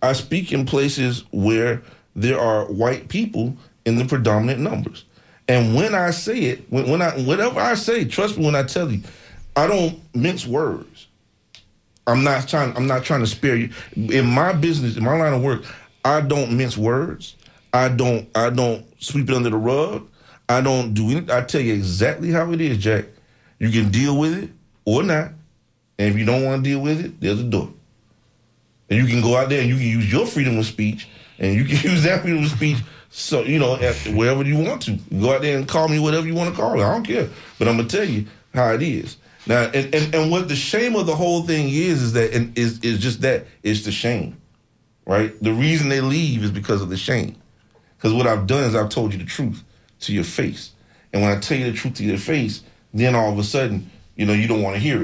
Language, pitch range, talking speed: English, 110-150 Hz, 235 wpm